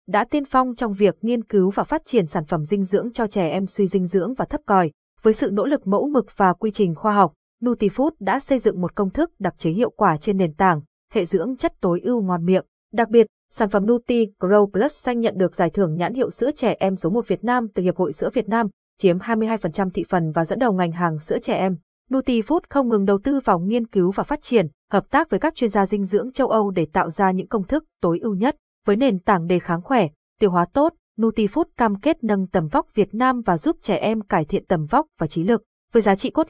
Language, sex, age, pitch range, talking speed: Vietnamese, female, 20-39, 190-240 Hz, 255 wpm